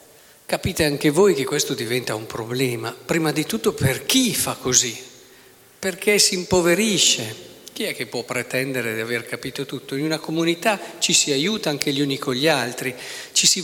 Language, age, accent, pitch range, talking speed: Italian, 50-69, native, 130-175 Hz, 180 wpm